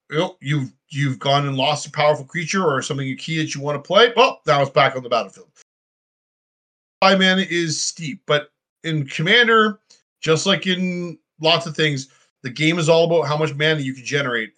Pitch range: 135-175 Hz